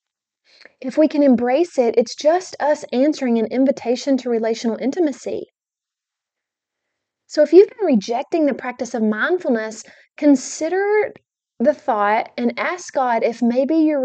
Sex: female